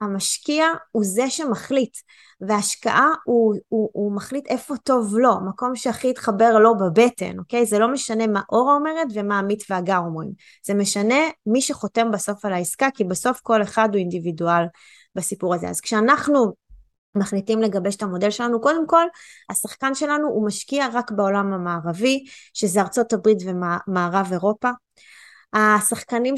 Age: 20-39